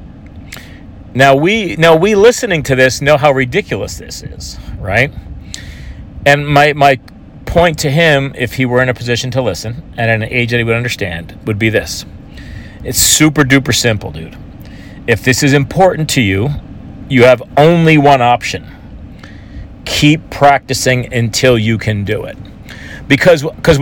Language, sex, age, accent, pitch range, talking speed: English, male, 40-59, American, 105-145 Hz, 155 wpm